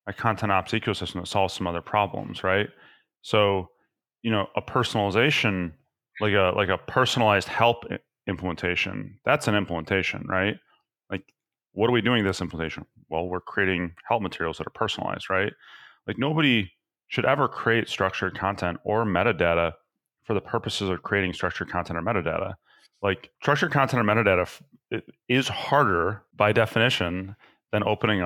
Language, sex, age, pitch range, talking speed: English, male, 30-49, 95-115 Hz, 150 wpm